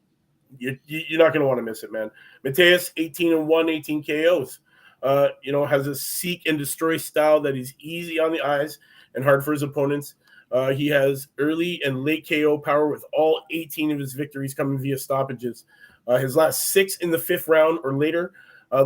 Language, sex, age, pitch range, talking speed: English, male, 30-49, 135-160 Hz, 190 wpm